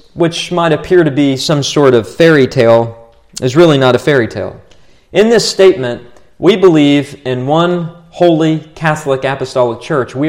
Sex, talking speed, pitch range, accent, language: male, 165 wpm, 130-170 Hz, American, English